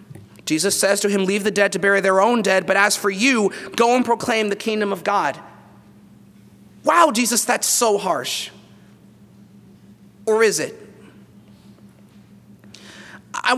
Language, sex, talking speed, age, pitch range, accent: English, male, 140 wpm, 30-49, 195-235 Hz, American